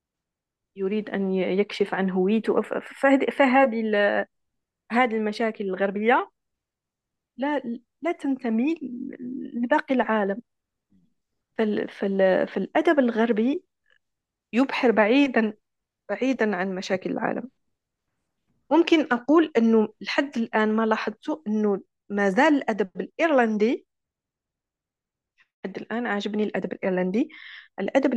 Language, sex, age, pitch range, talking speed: Arabic, female, 40-59, 200-255 Hz, 85 wpm